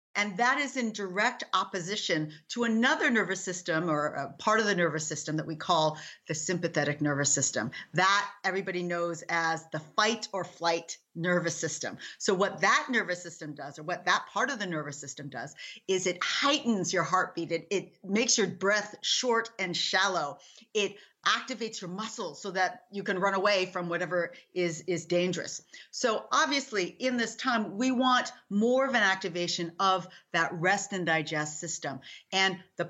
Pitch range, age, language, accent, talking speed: 170-230 Hz, 40-59, English, American, 175 wpm